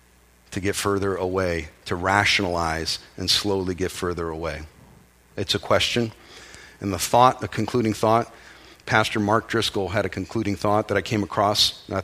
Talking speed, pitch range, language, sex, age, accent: 165 wpm, 80-110 Hz, English, male, 40-59, American